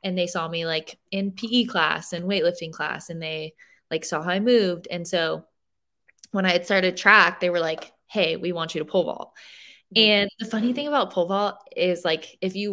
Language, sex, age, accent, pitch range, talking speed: English, female, 20-39, American, 170-225 Hz, 215 wpm